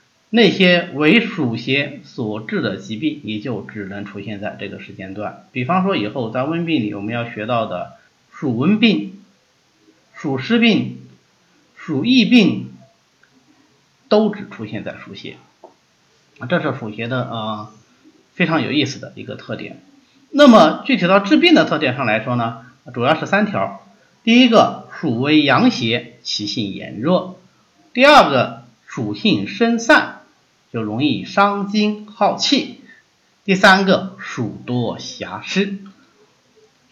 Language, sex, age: Chinese, male, 50-69